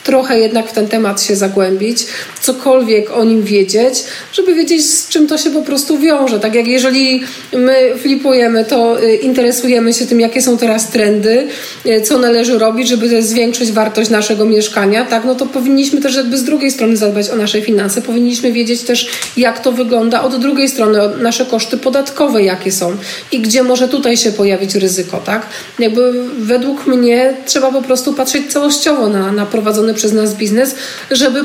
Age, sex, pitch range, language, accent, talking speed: 40-59, female, 220-260 Hz, Polish, native, 175 wpm